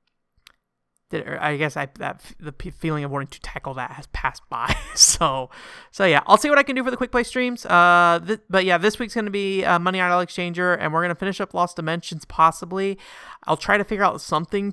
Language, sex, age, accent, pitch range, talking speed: English, male, 30-49, American, 135-180 Hz, 230 wpm